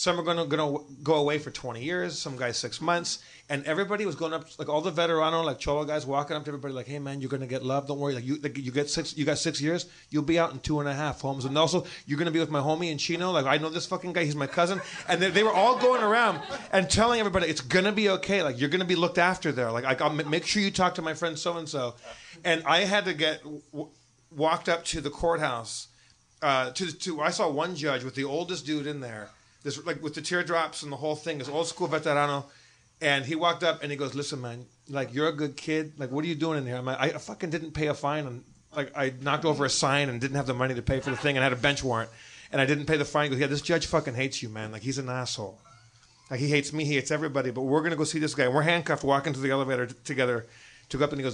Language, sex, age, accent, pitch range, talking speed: English, male, 30-49, American, 135-165 Hz, 290 wpm